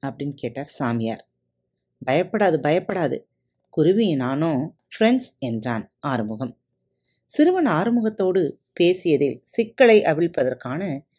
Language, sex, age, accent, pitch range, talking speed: Tamil, female, 30-49, native, 125-215 Hz, 80 wpm